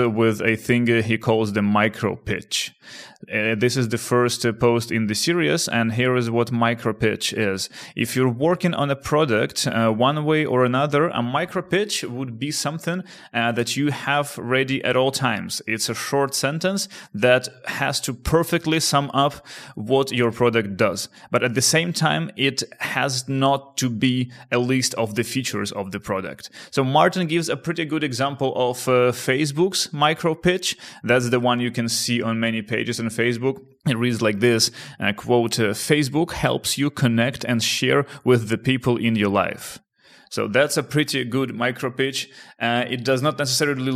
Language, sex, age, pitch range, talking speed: English, male, 30-49, 120-140 Hz, 185 wpm